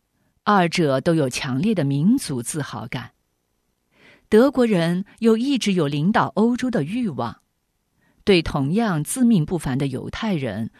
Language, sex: Chinese, female